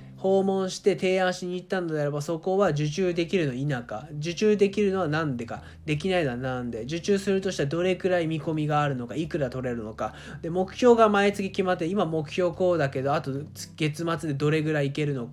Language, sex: Japanese, male